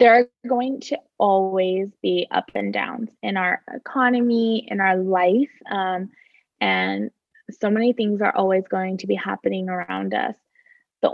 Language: English